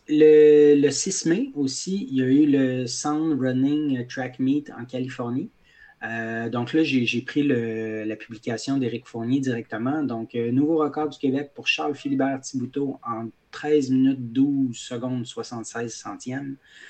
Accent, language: Canadian, French